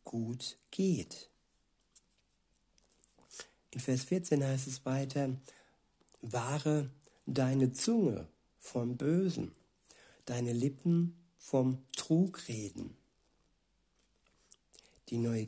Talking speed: 75 wpm